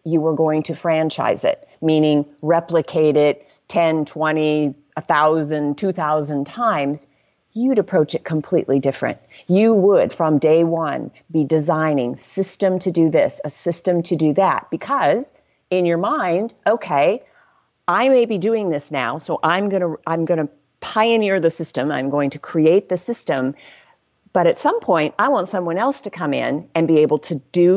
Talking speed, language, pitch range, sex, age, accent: 170 wpm, English, 155-190 Hz, female, 40-59, American